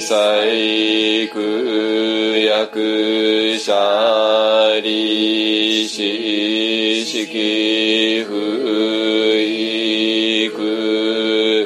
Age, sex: 40-59, male